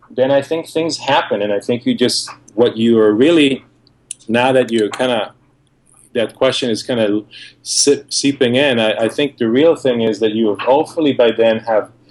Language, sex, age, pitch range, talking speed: English, male, 30-49, 110-130 Hz, 195 wpm